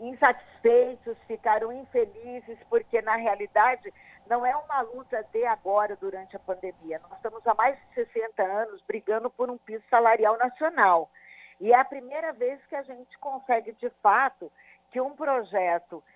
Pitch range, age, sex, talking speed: 190-250 Hz, 50-69, female, 155 wpm